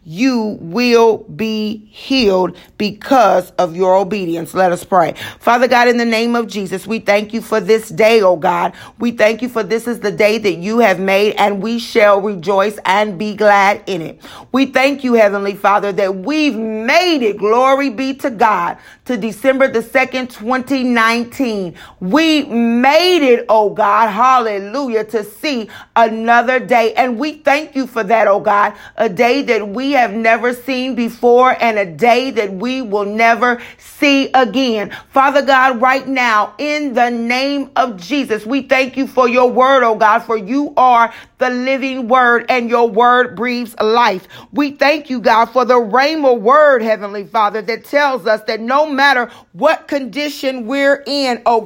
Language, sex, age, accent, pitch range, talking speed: English, female, 40-59, American, 215-265 Hz, 175 wpm